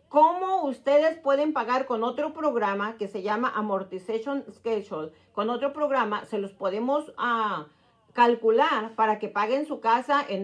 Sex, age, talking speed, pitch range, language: female, 40-59, 150 wpm, 220-285 Hz, Spanish